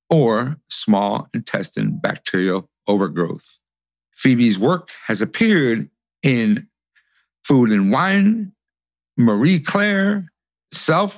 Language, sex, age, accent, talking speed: English, male, 60-79, American, 85 wpm